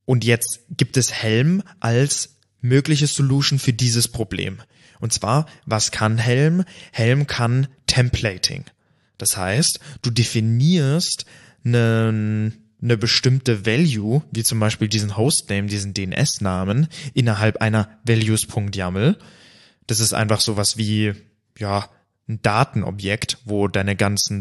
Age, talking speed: 20-39, 120 wpm